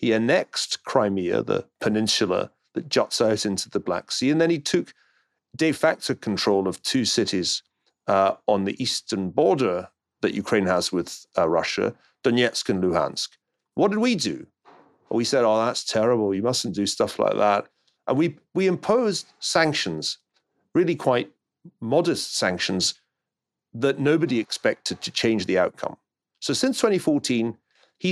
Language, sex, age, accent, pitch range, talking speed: English, male, 40-59, British, 105-155 Hz, 150 wpm